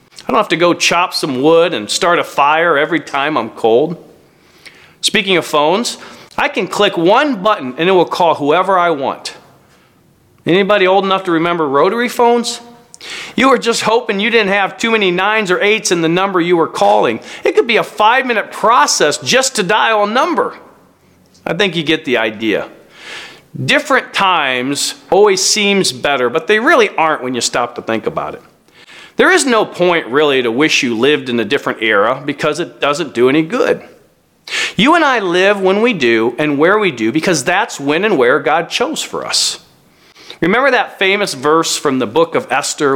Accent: American